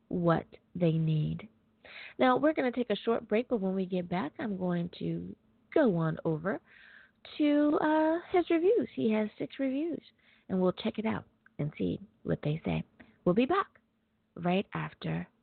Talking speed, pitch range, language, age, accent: 175 wpm, 145-195 Hz, English, 40-59, American